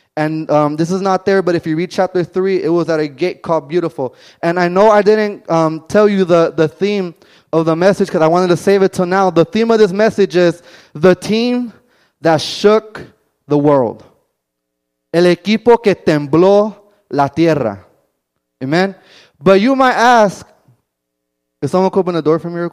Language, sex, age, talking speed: Spanish, male, 20-39, 195 wpm